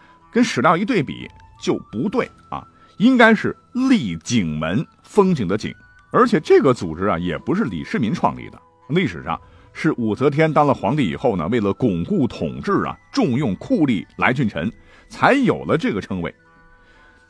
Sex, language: male, Chinese